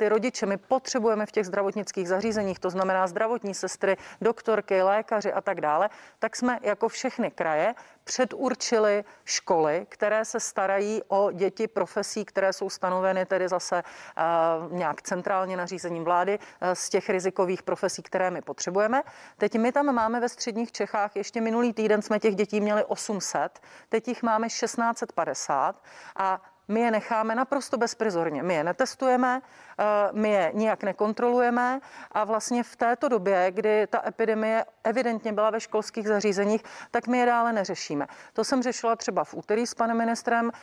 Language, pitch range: Czech, 200-230 Hz